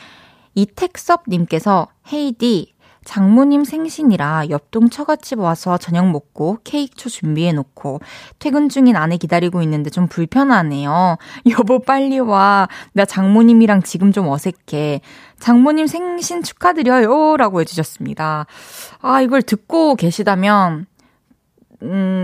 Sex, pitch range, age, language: female, 170-250 Hz, 20-39, Korean